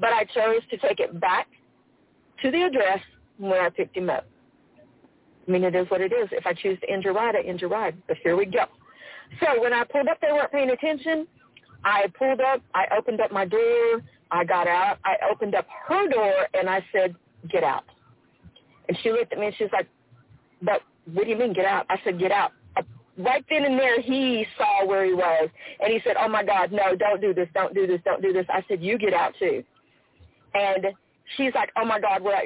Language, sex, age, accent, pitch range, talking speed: English, female, 40-59, American, 195-270 Hz, 235 wpm